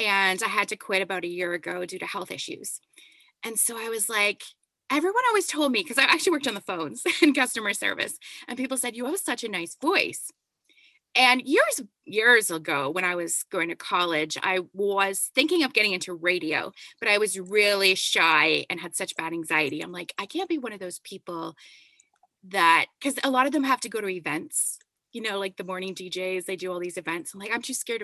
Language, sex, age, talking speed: English, female, 20-39, 225 wpm